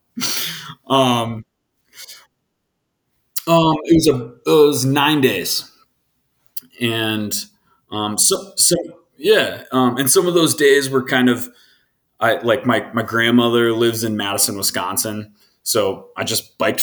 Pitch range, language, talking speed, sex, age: 105-130 Hz, English, 130 wpm, male, 30-49